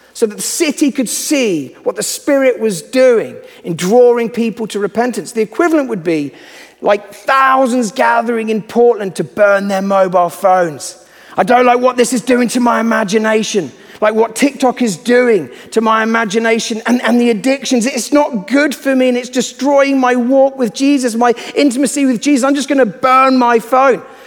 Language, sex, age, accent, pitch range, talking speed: English, male, 40-59, British, 185-250 Hz, 185 wpm